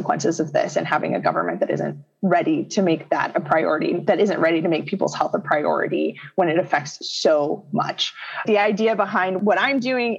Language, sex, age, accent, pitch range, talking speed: English, female, 20-39, American, 155-195 Hz, 200 wpm